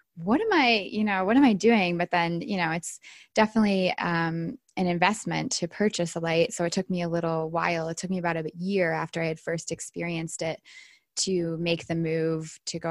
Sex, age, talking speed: female, 20-39, 220 wpm